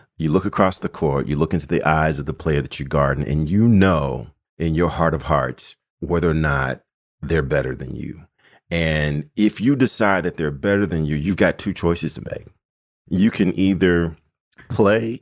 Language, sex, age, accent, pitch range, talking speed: English, male, 40-59, American, 75-105 Hz, 195 wpm